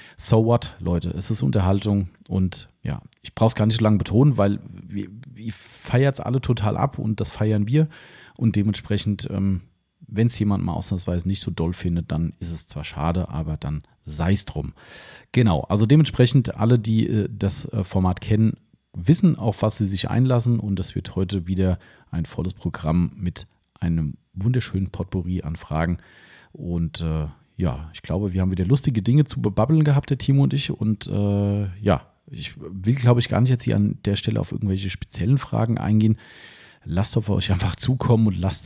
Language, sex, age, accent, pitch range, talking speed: German, male, 40-59, German, 90-115 Hz, 190 wpm